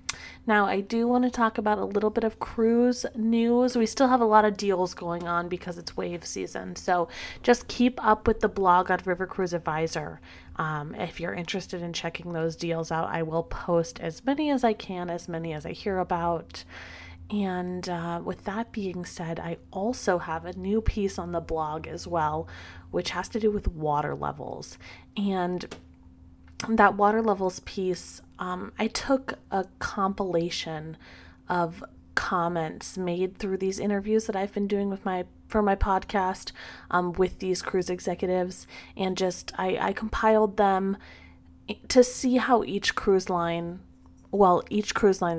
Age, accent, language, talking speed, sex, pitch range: 30-49, American, English, 170 wpm, female, 170-205 Hz